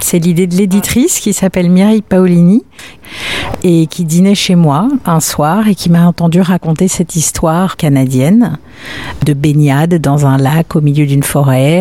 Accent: French